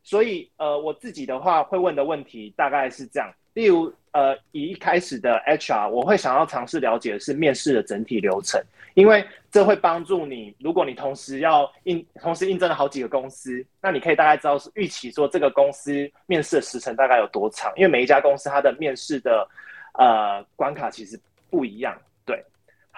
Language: Chinese